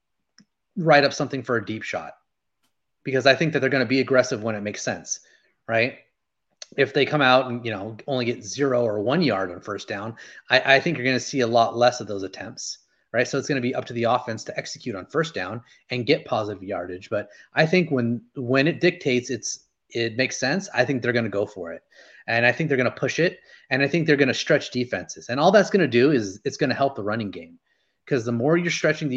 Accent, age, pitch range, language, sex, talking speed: American, 30-49, 115-140 Hz, English, male, 255 wpm